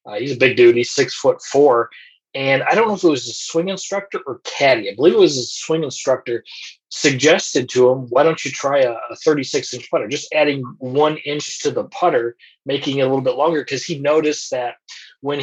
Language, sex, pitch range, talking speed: English, male, 125-170 Hz, 225 wpm